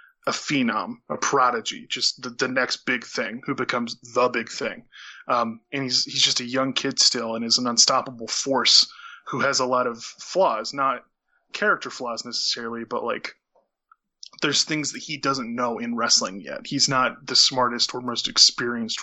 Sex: male